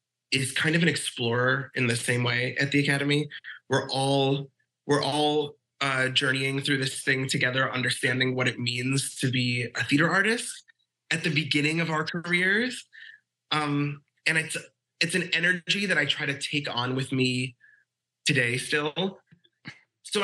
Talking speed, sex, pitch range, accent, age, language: 160 wpm, male, 130-165 Hz, American, 20-39, English